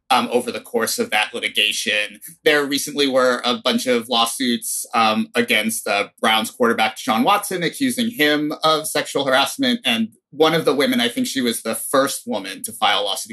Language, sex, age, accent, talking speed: English, male, 30-49, American, 195 wpm